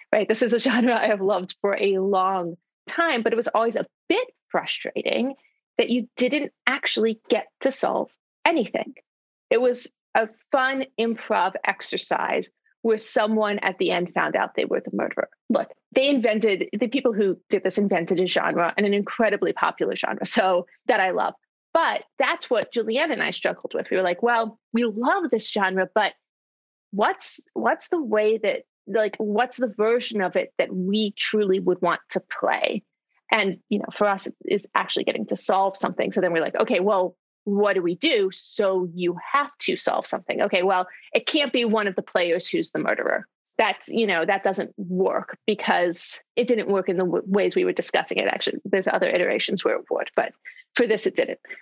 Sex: female